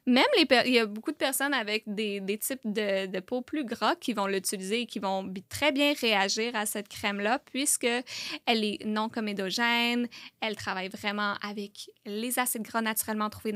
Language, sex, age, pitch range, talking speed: French, female, 10-29, 205-240 Hz, 190 wpm